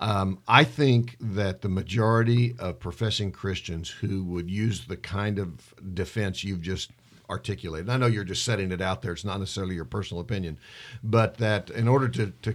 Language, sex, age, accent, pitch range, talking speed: English, male, 50-69, American, 100-130 Hz, 190 wpm